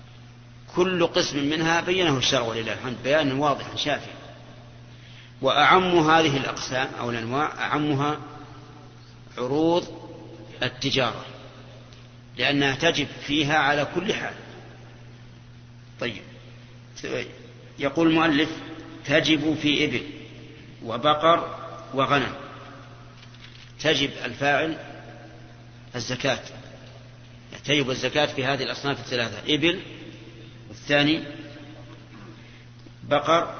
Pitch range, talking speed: 120-150 Hz, 80 wpm